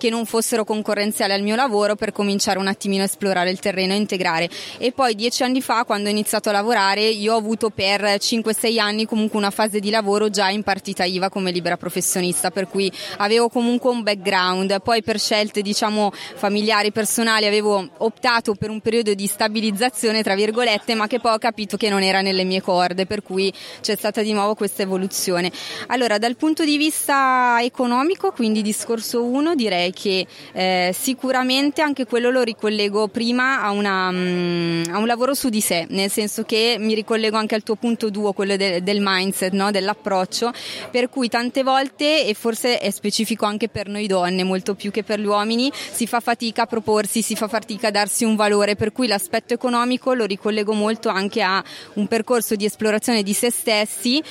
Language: Italian